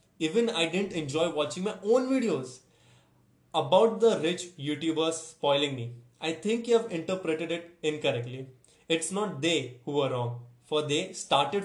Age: 20-39